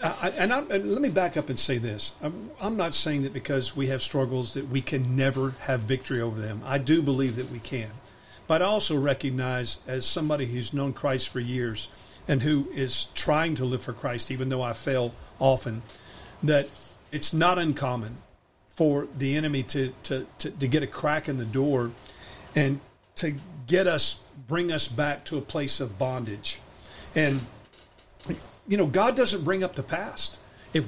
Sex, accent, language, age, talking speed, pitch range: male, American, English, 50-69, 185 wpm, 125-150 Hz